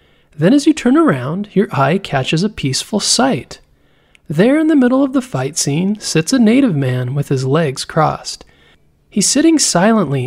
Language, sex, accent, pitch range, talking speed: English, male, American, 140-215 Hz, 175 wpm